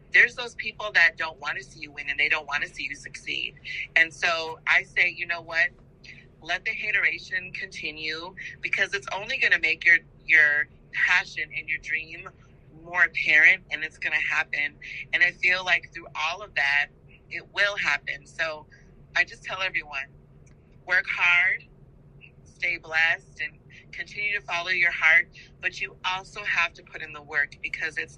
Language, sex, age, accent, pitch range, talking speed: English, female, 30-49, American, 155-180 Hz, 180 wpm